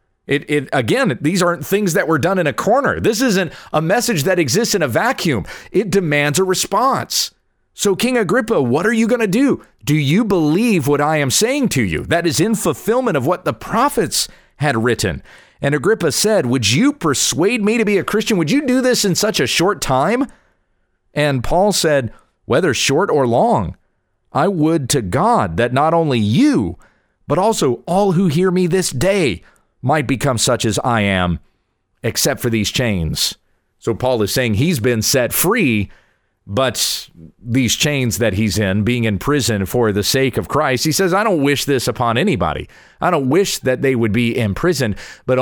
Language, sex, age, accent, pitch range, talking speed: English, male, 40-59, American, 120-190 Hz, 195 wpm